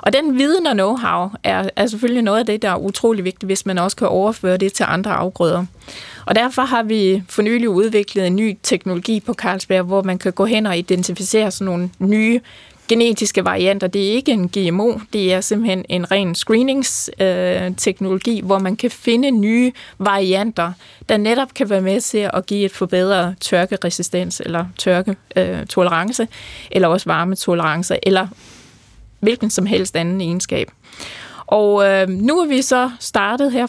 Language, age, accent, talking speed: Danish, 20-39, native, 170 wpm